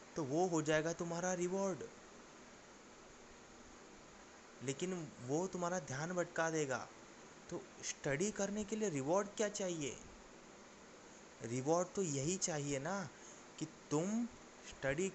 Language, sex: Hindi, male